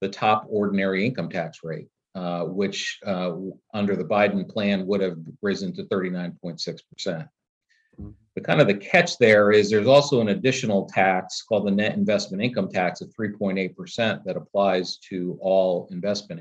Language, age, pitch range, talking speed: English, 40-59, 95-115 Hz, 185 wpm